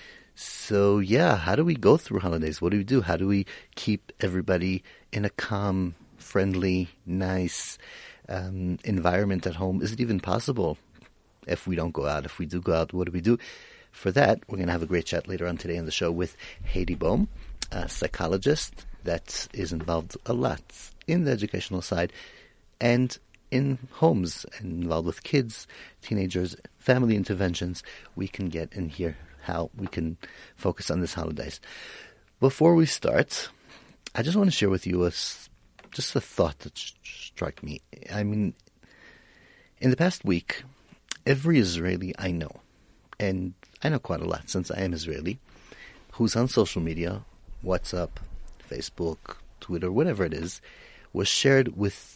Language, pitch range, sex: English, 85-115 Hz, male